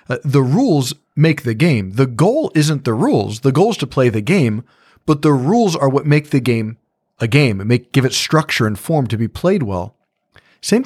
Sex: male